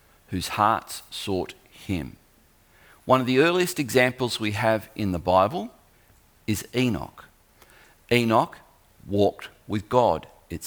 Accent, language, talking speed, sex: Australian, English, 120 wpm, male